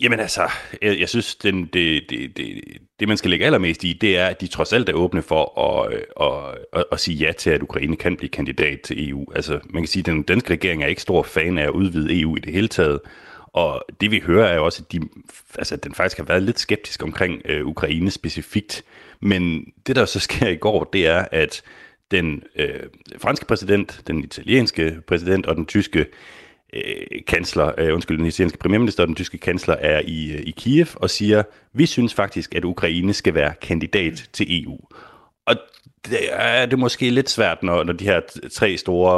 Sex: male